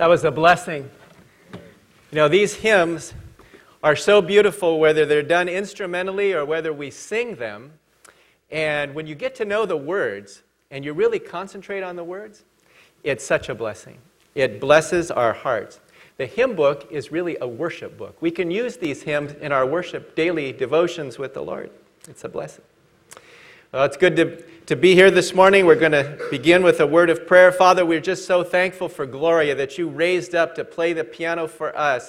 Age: 40-59